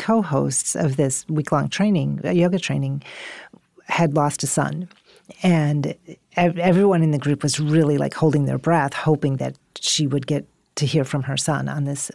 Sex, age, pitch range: female, 40-59, 145-175 Hz